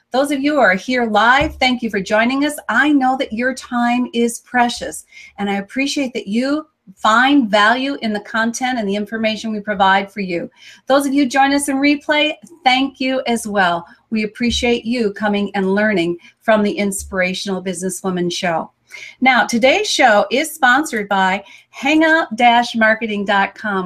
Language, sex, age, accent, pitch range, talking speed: English, female, 40-59, American, 205-275 Hz, 165 wpm